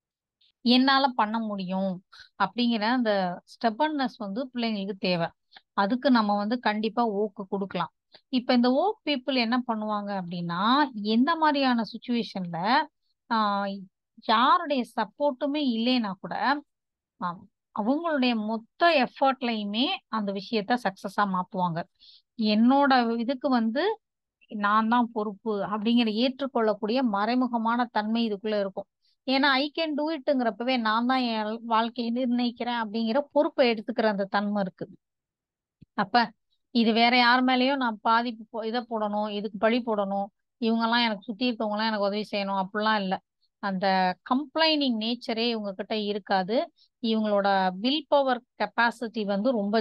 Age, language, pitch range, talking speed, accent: 30-49, Tamil, 210-255 Hz, 115 wpm, native